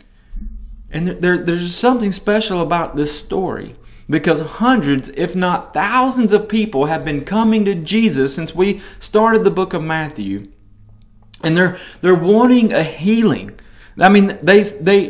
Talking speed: 145 wpm